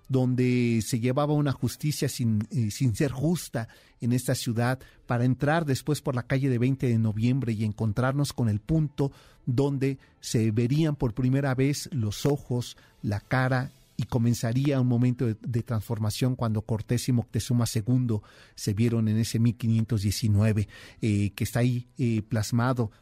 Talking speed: 160 wpm